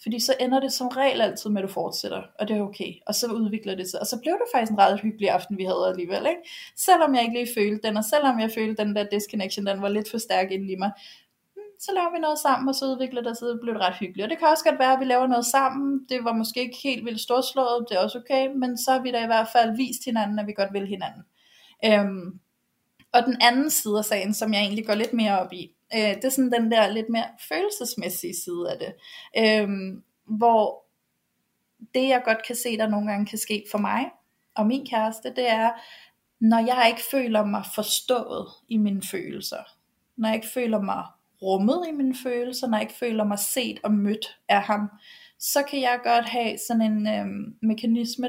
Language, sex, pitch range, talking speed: Danish, female, 210-255 Hz, 230 wpm